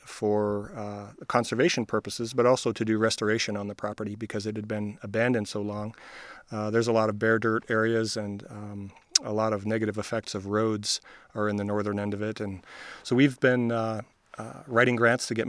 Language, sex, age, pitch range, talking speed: English, male, 40-59, 105-115 Hz, 205 wpm